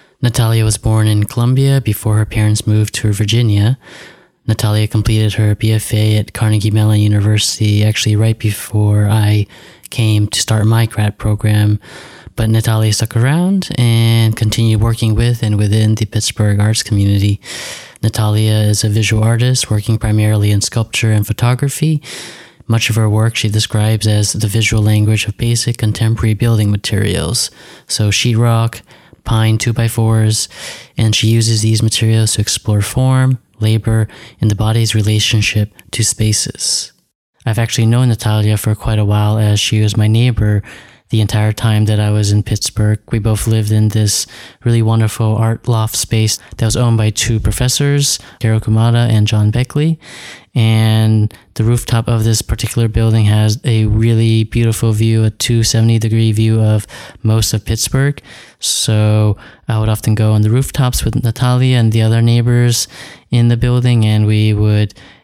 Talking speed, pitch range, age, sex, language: 155 wpm, 105-115 Hz, 20-39, male, English